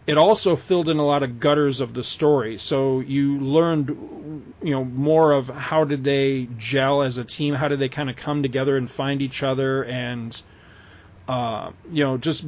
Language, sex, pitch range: English, male, 130-160 Hz